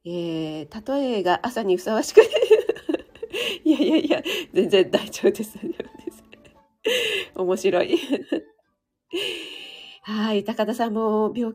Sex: female